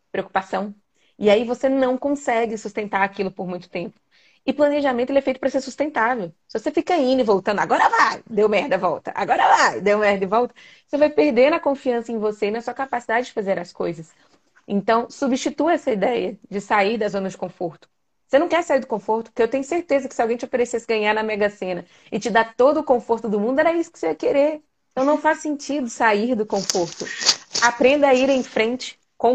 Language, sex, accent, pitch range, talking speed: Portuguese, female, Brazilian, 200-260 Hz, 220 wpm